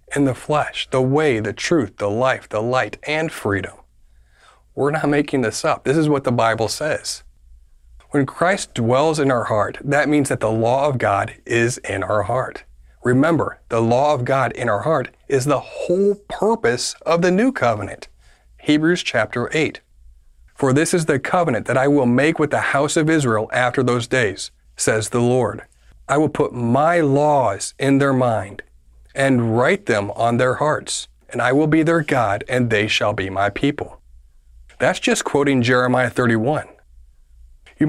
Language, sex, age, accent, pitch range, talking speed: English, male, 40-59, American, 100-145 Hz, 175 wpm